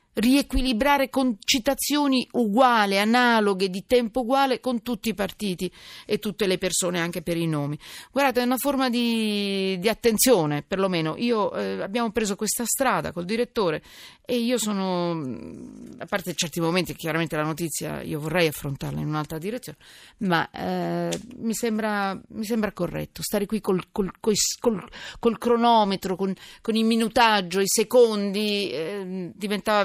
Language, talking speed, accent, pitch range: Italian, 155 wpm, native, 180-230 Hz